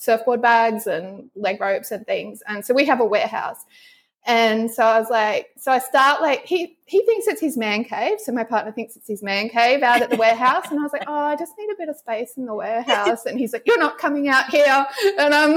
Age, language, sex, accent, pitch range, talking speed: 20-39, English, female, Australian, 215-295 Hz, 255 wpm